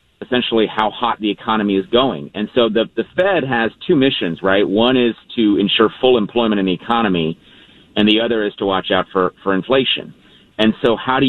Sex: male